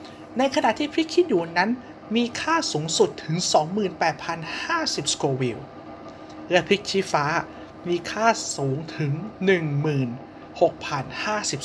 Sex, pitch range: male, 150-205 Hz